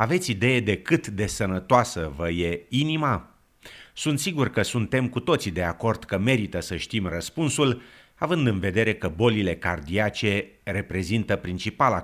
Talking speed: 150 wpm